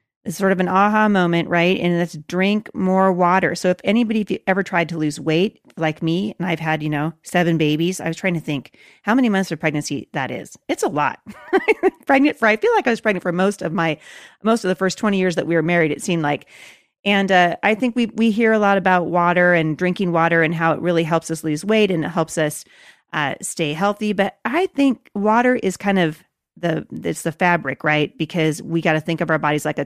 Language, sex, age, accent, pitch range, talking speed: English, female, 30-49, American, 165-210 Hz, 240 wpm